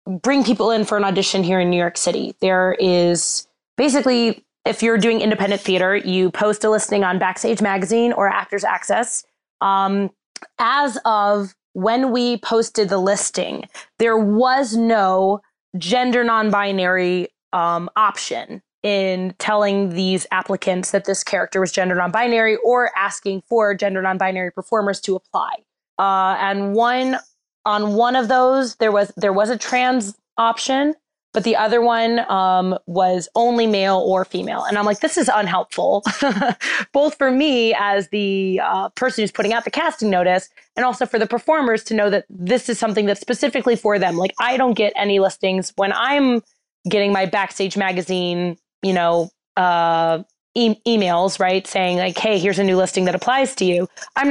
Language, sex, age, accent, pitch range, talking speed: English, female, 20-39, American, 190-230 Hz, 165 wpm